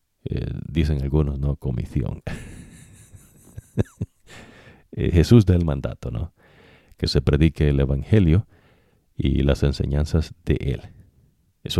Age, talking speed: 50-69, 110 wpm